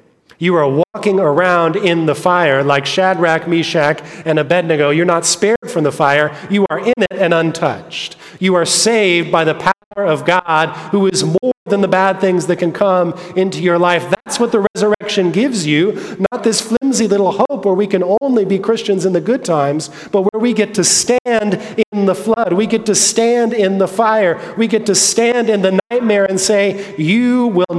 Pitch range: 135-200 Hz